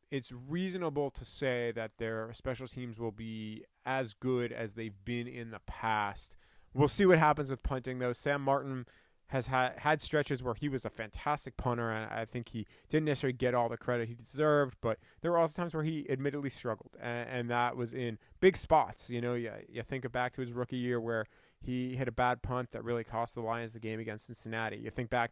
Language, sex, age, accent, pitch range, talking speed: English, male, 30-49, American, 115-135 Hz, 215 wpm